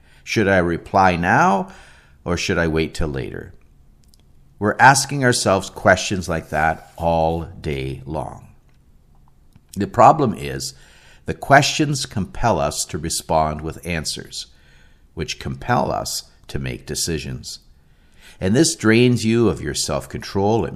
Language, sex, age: English, male, 50-69